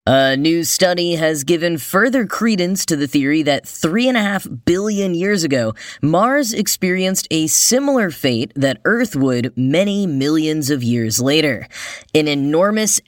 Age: 10-29